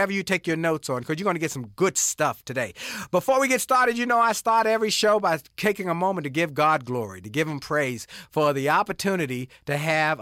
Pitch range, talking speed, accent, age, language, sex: 140-190 Hz, 240 wpm, American, 50-69, English, male